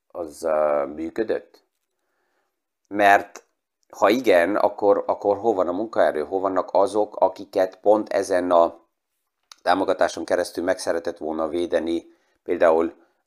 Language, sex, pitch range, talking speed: Hungarian, male, 90-110 Hz, 120 wpm